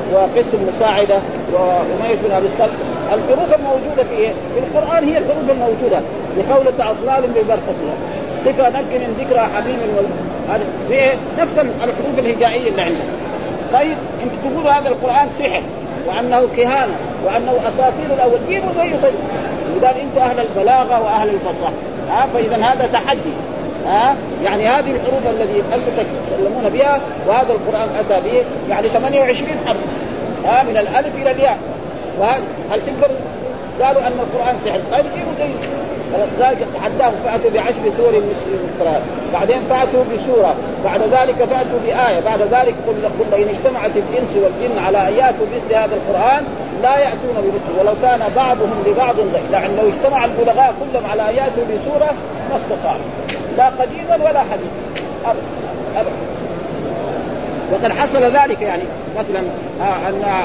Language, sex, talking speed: Arabic, male, 135 wpm